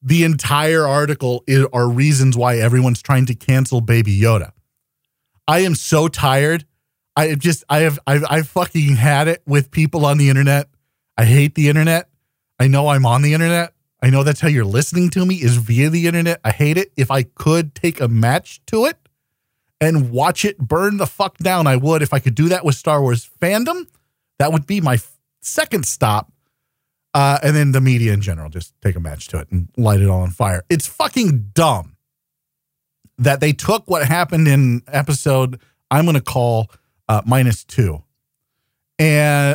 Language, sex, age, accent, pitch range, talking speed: English, male, 40-59, American, 125-165 Hz, 190 wpm